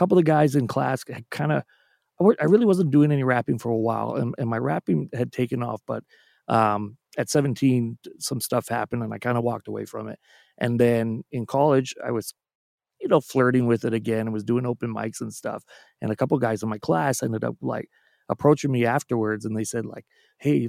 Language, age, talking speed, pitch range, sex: English, 30-49, 220 wpm, 115-140 Hz, male